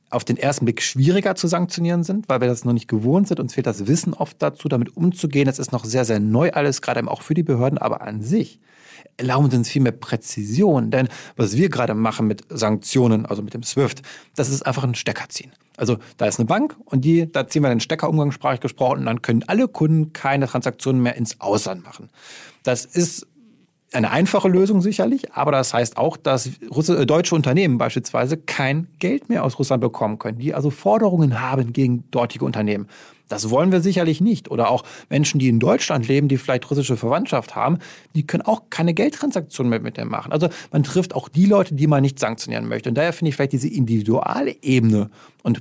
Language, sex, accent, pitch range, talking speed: German, male, German, 120-165 Hz, 210 wpm